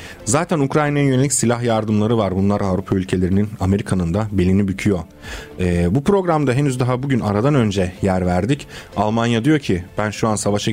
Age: 40-59